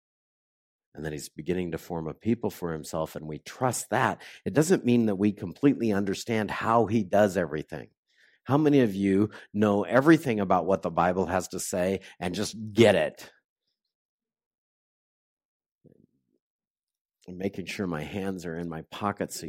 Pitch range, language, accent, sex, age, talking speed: 80-105 Hz, English, American, male, 50-69, 160 wpm